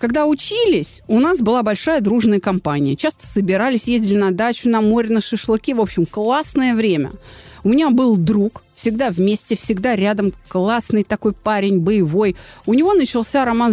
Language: Russian